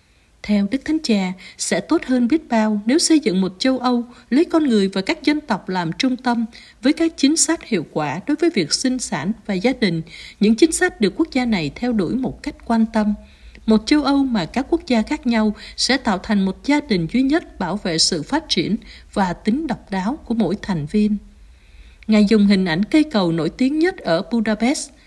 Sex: female